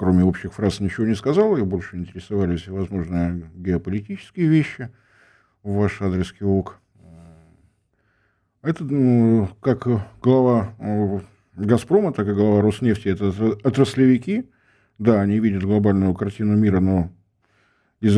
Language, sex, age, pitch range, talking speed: Russian, male, 50-69, 95-120 Hz, 120 wpm